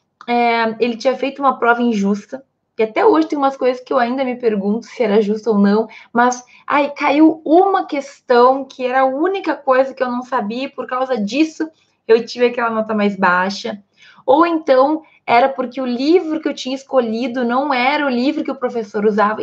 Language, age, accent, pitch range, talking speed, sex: Portuguese, 20-39, Brazilian, 215-275 Hz, 200 wpm, female